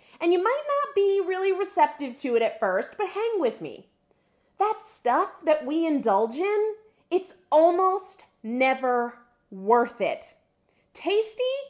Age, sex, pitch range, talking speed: 30-49, female, 245-345 Hz, 140 wpm